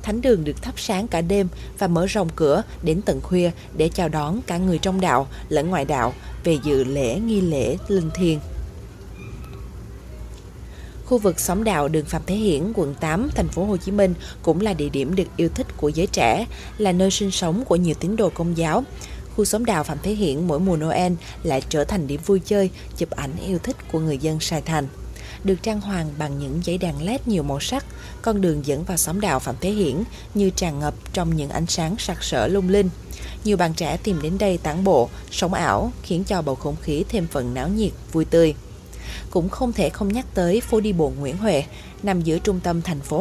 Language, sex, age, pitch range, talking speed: Vietnamese, female, 20-39, 155-200 Hz, 220 wpm